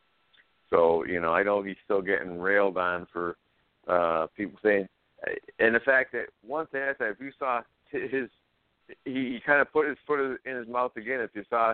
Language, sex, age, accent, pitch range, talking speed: English, male, 60-79, American, 115-155 Hz, 190 wpm